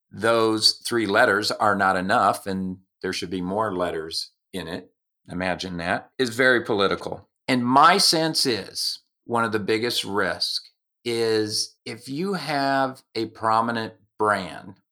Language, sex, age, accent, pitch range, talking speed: English, male, 50-69, American, 95-125 Hz, 140 wpm